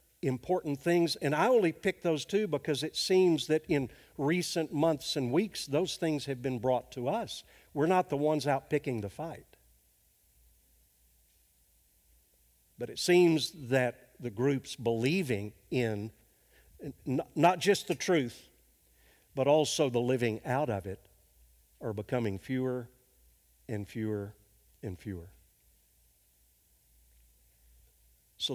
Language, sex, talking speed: English, male, 125 wpm